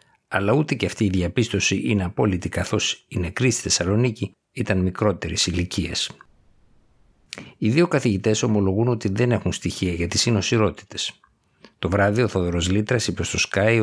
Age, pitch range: 60-79, 90-110 Hz